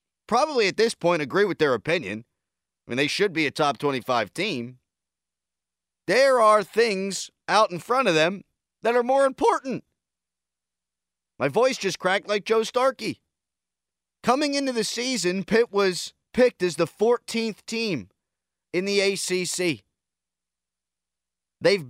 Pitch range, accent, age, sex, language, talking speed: 155-210 Hz, American, 30-49, male, English, 140 wpm